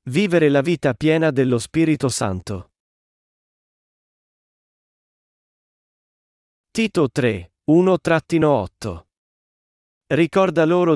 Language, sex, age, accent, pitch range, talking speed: Italian, male, 40-59, native, 125-165 Hz, 65 wpm